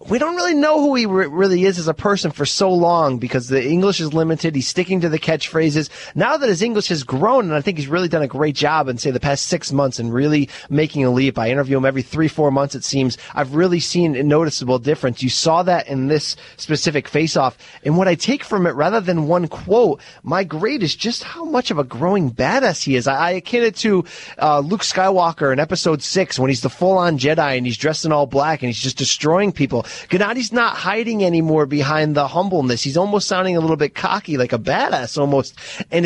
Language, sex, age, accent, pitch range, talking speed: English, male, 30-49, American, 145-185 Hz, 230 wpm